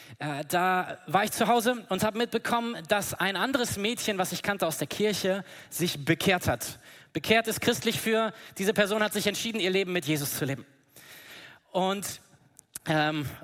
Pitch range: 160-210 Hz